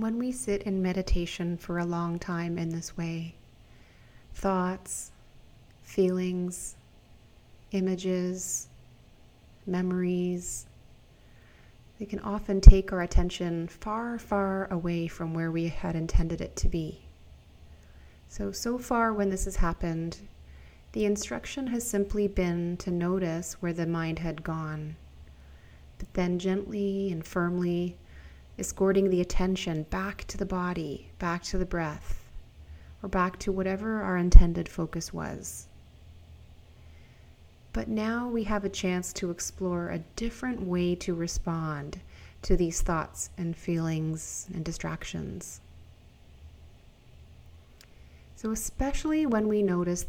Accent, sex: American, female